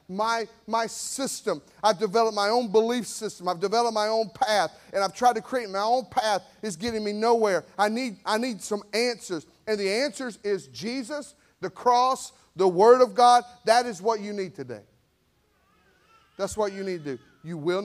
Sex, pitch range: male, 170-230 Hz